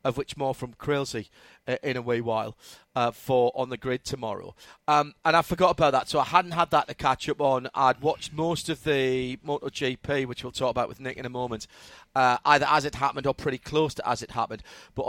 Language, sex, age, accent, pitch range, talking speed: English, male, 40-59, British, 130-170 Hz, 230 wpm